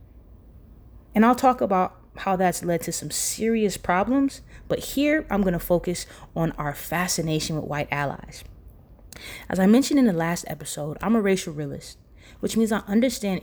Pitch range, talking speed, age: 165-225 Hz, 170 wpm, 20-39